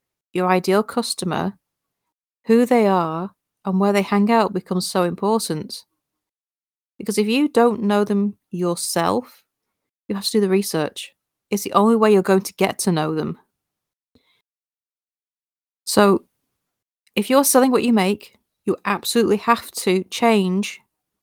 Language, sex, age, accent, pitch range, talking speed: English, female, 40-59, British, 180-210 Hz, 140 wpm